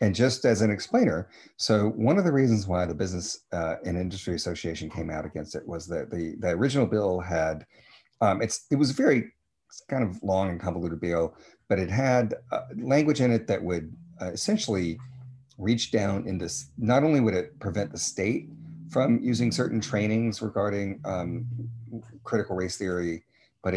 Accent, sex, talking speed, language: American, male, 180 wpm, English